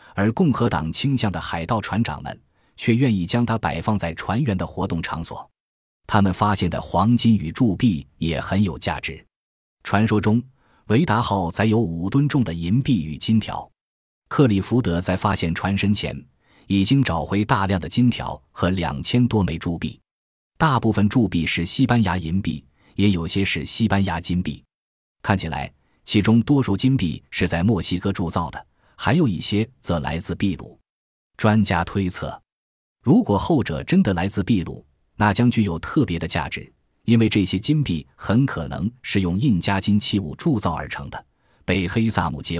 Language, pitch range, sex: Chinese, 85-110 Hz, male